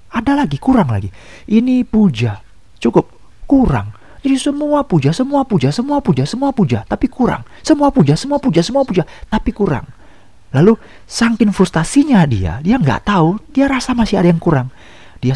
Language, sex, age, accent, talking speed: Indonesian, male, 40-59, native, 170 wpm